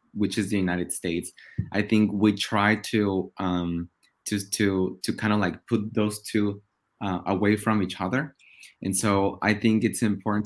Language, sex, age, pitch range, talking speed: English, male, 20-39, 95-110 Hz, 180 wpm